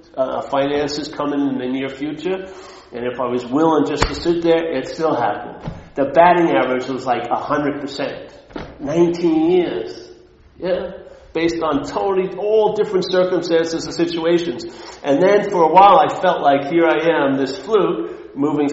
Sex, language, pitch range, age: male, English, 155-205 Hz, 50-69